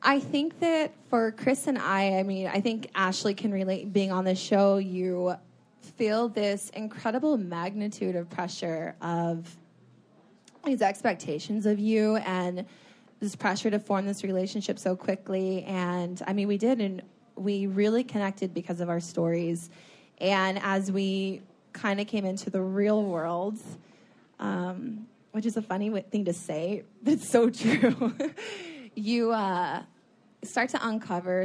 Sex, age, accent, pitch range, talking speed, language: female, 20-39, American, 180-220 Hz, 150 wpm, English